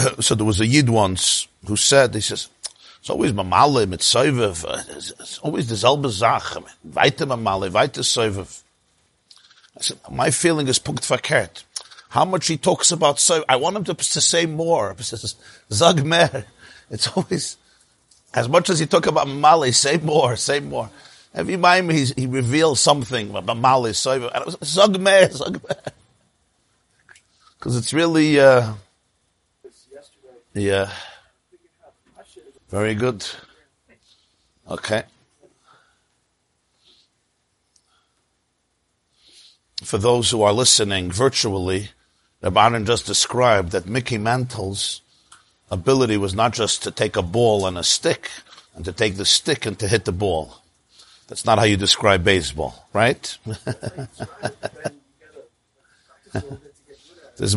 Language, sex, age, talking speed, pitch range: English, male, 50-69, 125 wpm, 105-150 Hz